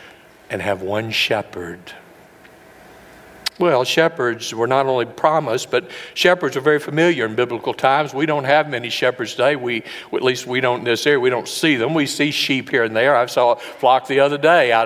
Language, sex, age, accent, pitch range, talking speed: English, male, 60-79, American, 130-160 Hz, 200 wpm